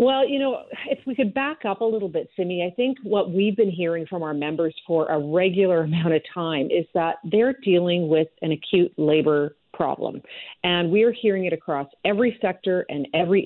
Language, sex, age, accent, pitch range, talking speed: English, female, 50-69, American, 160-210 Hz, 205 wpm